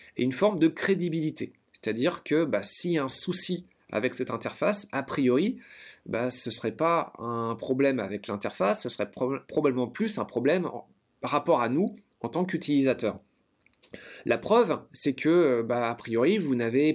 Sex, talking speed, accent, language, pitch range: male, 175 wpm, French, French, 120-160 Hz